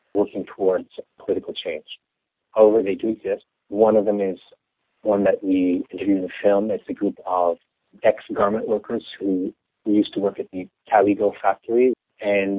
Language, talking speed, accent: English, 160 wpm, American